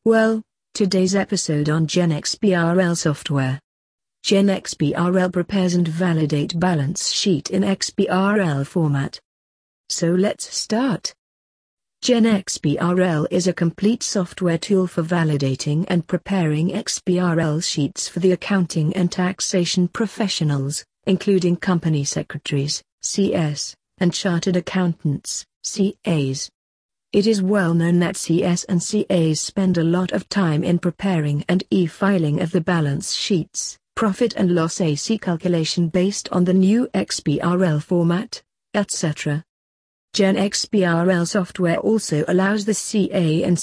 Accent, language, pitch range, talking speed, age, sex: British, English, 160-195 Hz, 115 wpm, 50-69, female